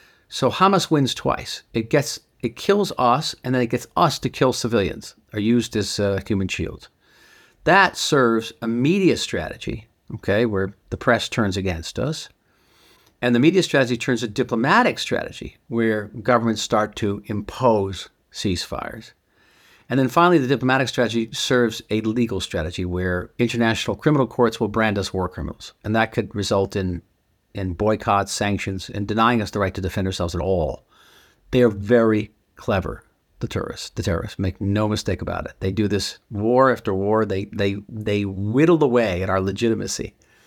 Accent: American